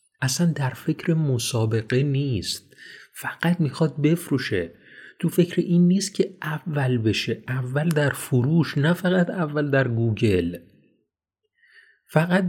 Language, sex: Persian, male